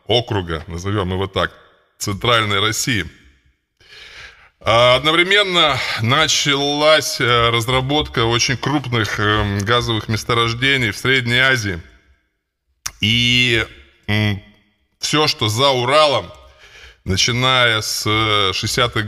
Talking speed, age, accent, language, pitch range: 75 wpm, 20-39, native, Russian, 100-125 Hz